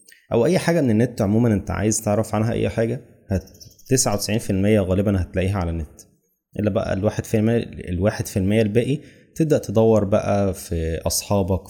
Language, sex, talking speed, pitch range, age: Arabic, male, 150 wpm, 95-110 Hz, 20-39